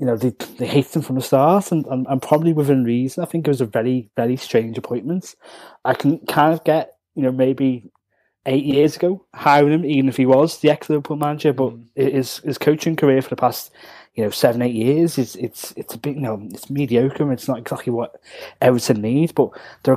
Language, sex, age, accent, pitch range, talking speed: English, male, 20-39, British, 120-145 Hz, 225 wpm